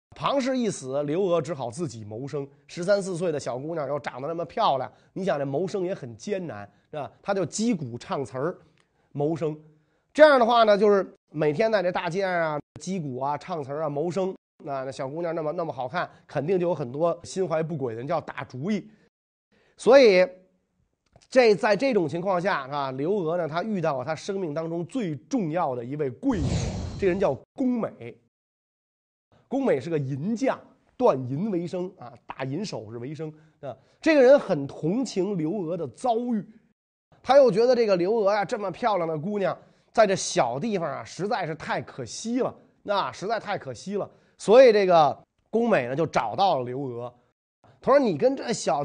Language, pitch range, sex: Chinese, 145-205 Hz, male